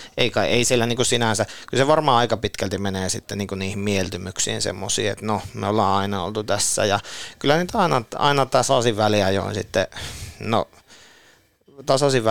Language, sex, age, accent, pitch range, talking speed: Finnish, male, 30-49, native, 95-120 Hz, 165 wpm